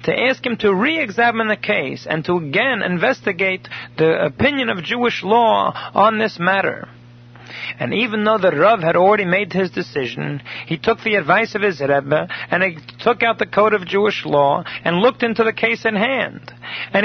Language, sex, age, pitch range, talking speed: English, male, 40-59, 175-235 Hz, 185 wpm